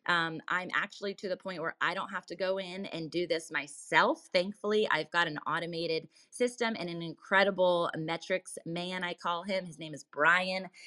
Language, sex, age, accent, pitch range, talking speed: English, female, 20-39, American, 170-205 Hz, 195 wpm